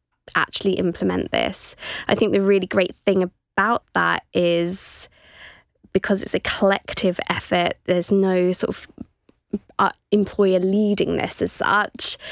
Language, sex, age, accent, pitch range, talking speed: English, female, 20-39, British, 175-195 Hz, 130 wpm